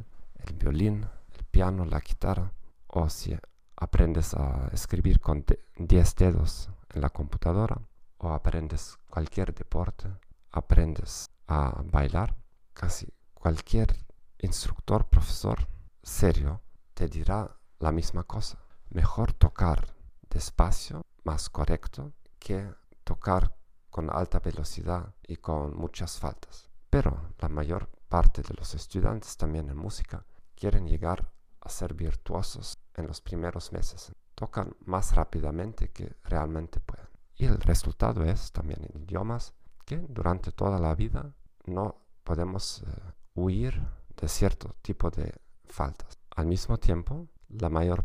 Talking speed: 125 wpm